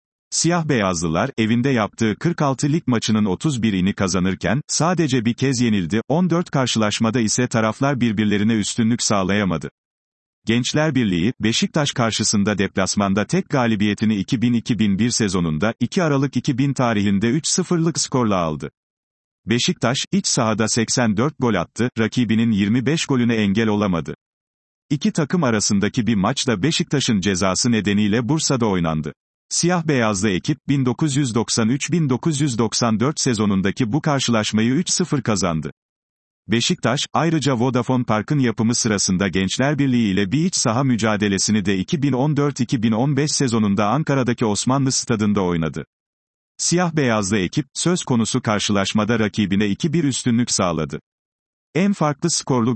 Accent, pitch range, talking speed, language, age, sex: native, 105-145 Hz, 115 wpm, Turkish, 40-59, male